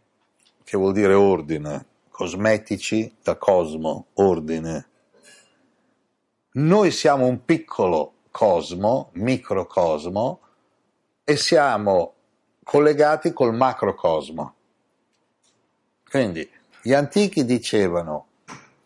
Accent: native